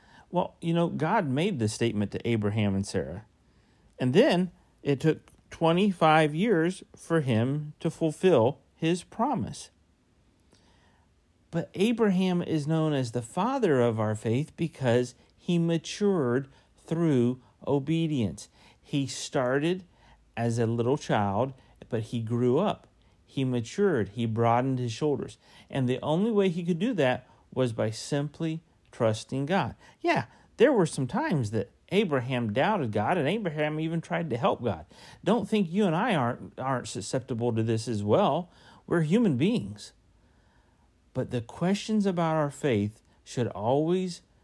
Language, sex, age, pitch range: English, male, 40-59, 110-165 Hz